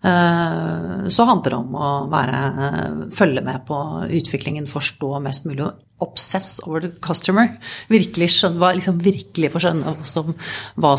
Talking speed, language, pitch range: 125 wpm, English, 150-190 Hz